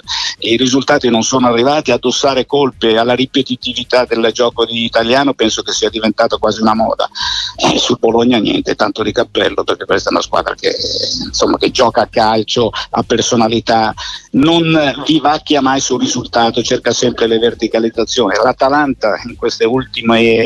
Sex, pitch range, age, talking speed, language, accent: male, 115-140 Hz, 50-69, 155 wpm, Italian, native